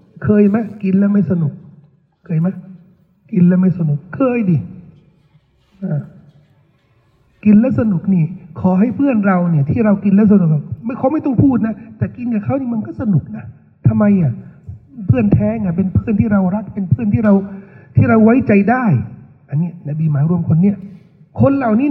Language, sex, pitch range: Thai, male, 155-225 Hz